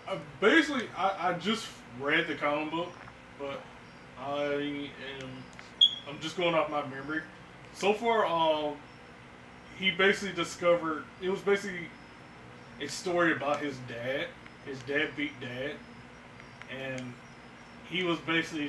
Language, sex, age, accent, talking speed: English, male, 20-39, American, 130 wpm